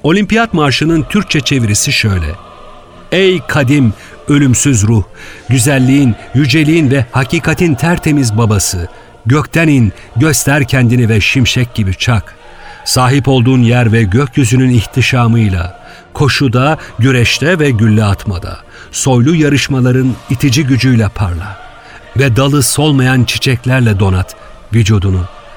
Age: 50-69